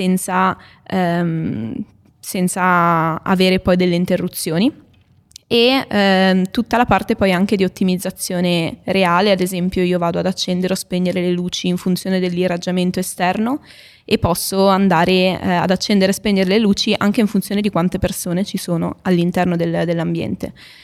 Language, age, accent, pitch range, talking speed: Italian, 20-39, native, 175-190 Hz, 145 wpm